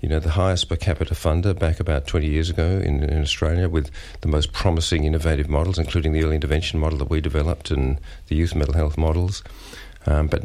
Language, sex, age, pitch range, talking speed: English, male, 50-69, 75-90 Hz, 215 wpm